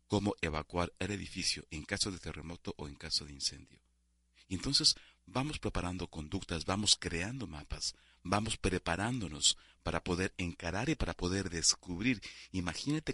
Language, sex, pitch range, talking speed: Spanish, male, 75-95 Hz, 135 wpm